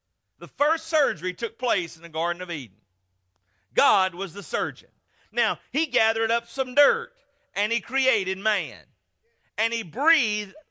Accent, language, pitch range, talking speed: American, English, 210-285 Hz, 150 wpm